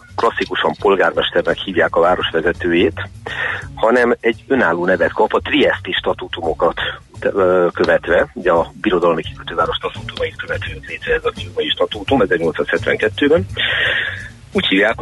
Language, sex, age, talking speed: Hungarian, male, 40-59, 110 wpm